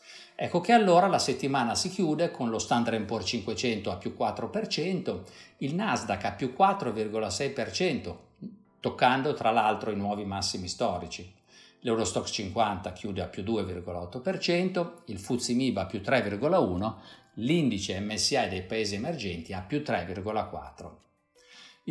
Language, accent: Italian, native